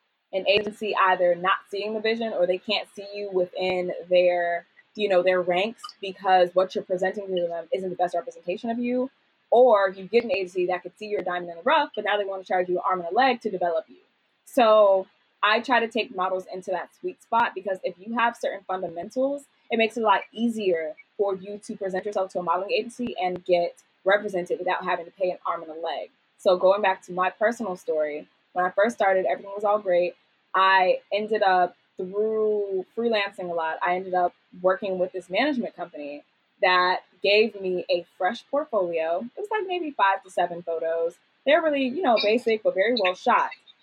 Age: 20-39